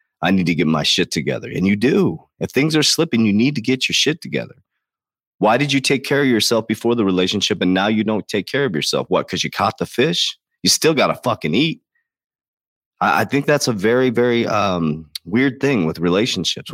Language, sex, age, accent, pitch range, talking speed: English, male, 30-49, American, 90-120 Hz, 225 wpm